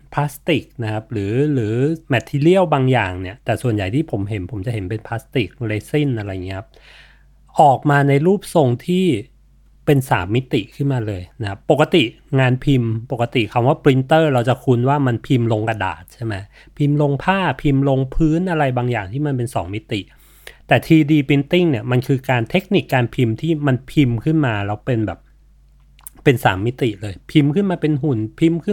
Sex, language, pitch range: male, Thai, 115-155 Hz